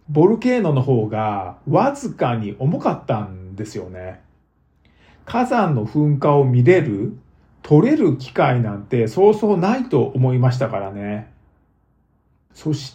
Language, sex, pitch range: Japanese, male, 110-165 Hz